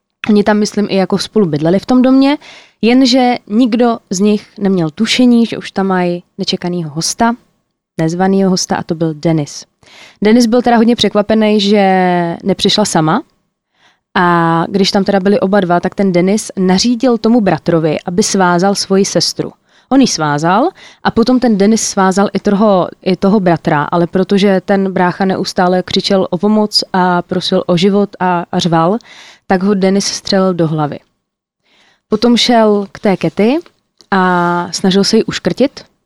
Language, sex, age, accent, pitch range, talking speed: Czech, female, 20-39, native, 175-210 Hz, 160 wpm